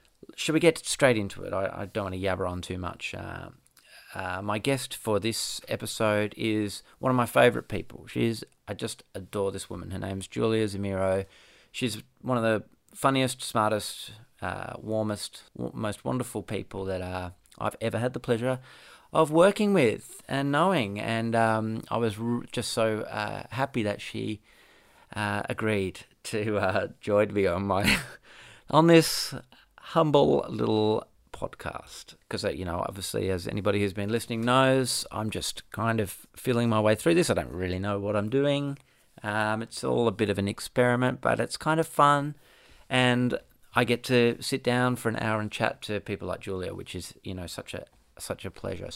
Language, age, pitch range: English, 30-49, 100-125 Hz